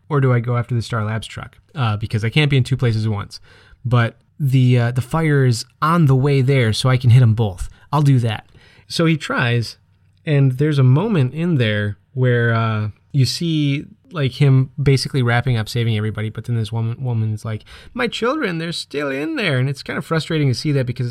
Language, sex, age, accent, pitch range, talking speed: English, male, 30-49, American, 115-140 Hz, 225 wpm